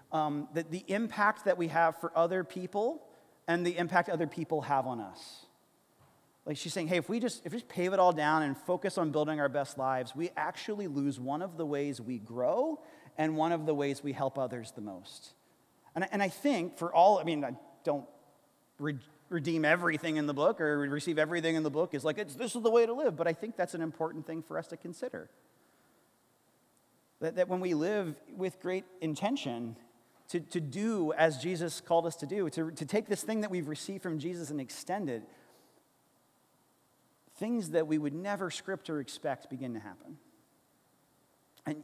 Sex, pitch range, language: male, 145-185 Hz, English